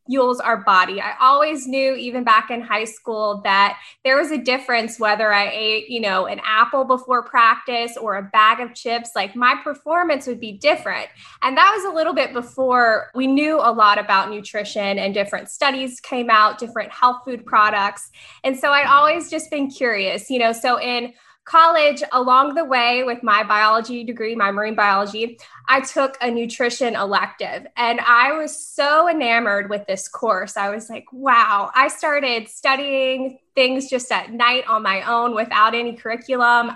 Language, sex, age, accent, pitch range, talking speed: English, female, 10-29, American, 220-270 Hz, 180 wpm